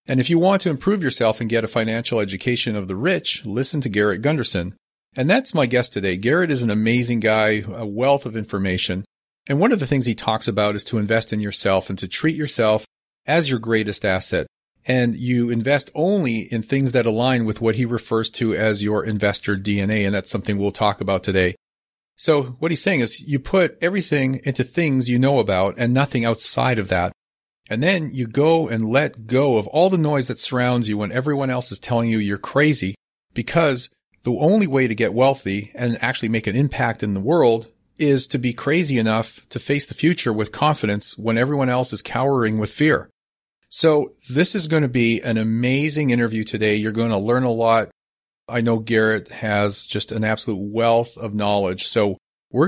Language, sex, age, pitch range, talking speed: English, male, 40-59, 110-135 Hz, 205 wpm